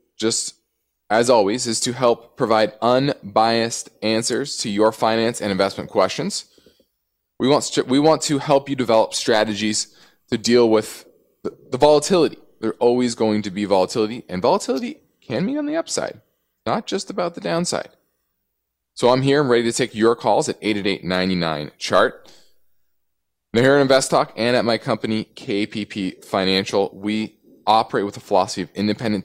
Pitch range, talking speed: 100-125 Hz, 160 wpm